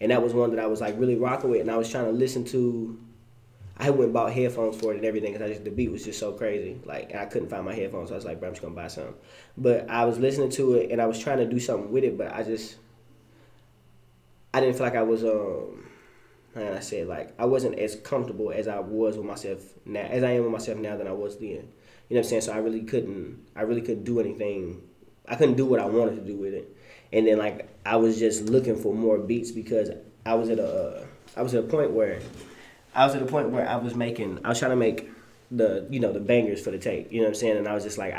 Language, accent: English, American